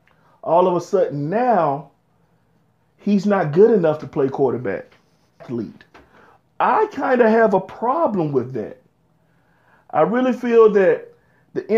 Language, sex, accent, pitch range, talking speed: English, male, American, 145-190 Hz, 130 wpm